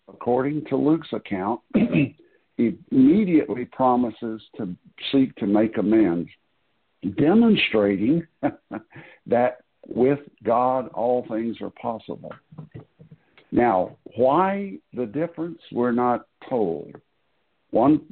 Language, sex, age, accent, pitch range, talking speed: English, male, 60-79, American, 105-150 Hz, 95 wpm